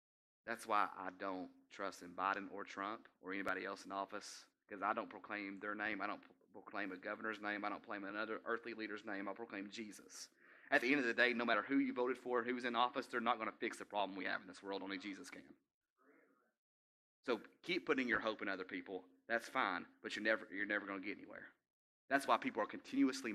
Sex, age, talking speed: male, 30-49, 230 wpm